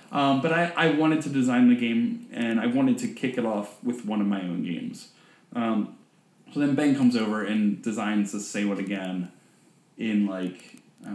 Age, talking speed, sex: 20-39, 200 wpm, male